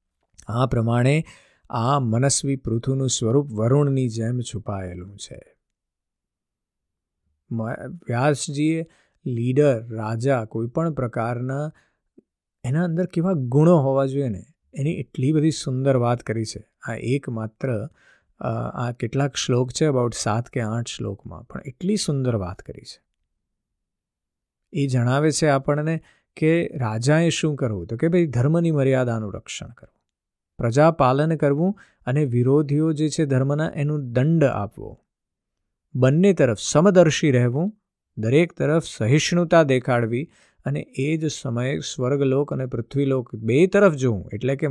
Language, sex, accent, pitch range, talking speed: Gujarati, male, native, 115-155 Hz, 100 wpm